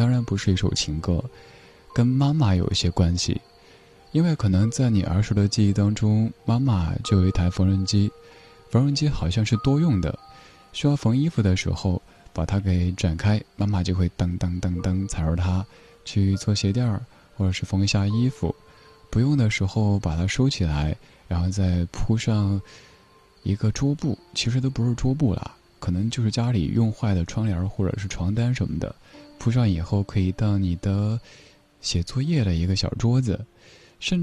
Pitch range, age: 90-120 Hz, 20-39